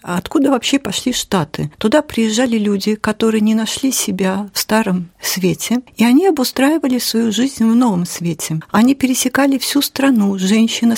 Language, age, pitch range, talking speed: Russian, 50-69, 195-245 Hz, 150 wpm